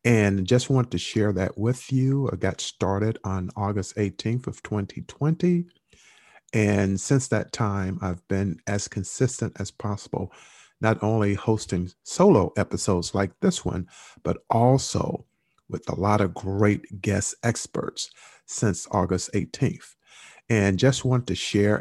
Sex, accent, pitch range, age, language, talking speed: male, American, 100-120 Hz, 50-69, English, 140 wpm